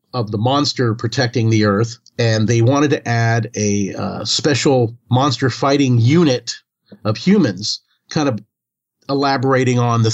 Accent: American